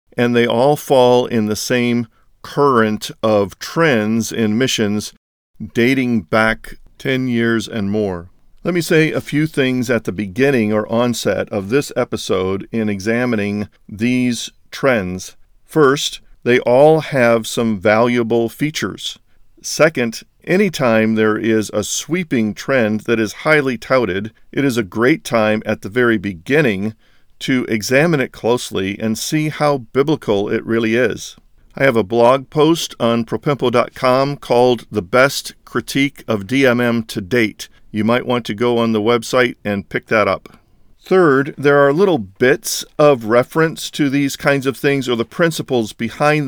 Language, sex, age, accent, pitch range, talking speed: English, male, 50-69, American, 110-140 Hz, 150 wpm